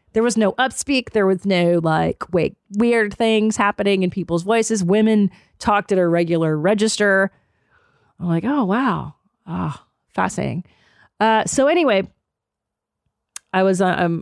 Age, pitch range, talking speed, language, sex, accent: 30-49, 175-225 Hz, 145 wpm, English, female, American